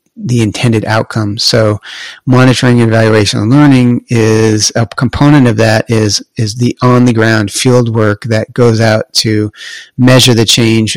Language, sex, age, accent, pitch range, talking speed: English, male, 40-59, American, 110-125 Hz, 160 wpm